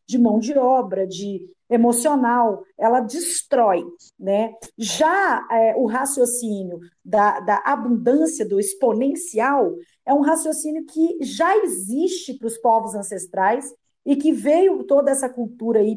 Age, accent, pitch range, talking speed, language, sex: 40-59, Brazilian, 225-300 Hz, 125 wpm, English, female